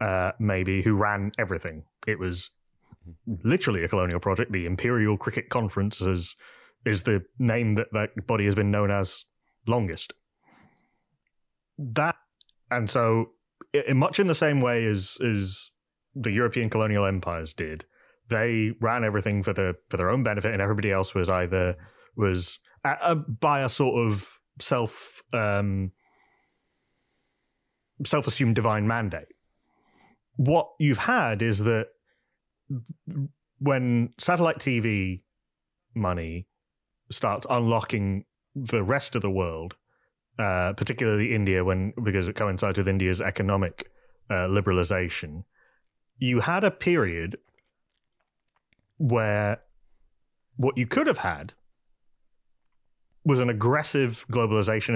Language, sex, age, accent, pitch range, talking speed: English, male, 20-39, British, 95-120 Hz, 120 wpm